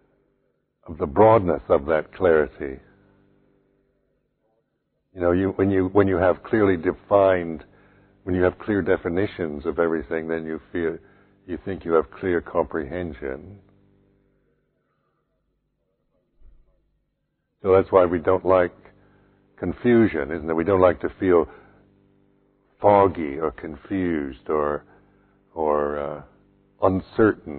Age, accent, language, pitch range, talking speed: 60-79, American, English, 80-100 Hz, 115 wpm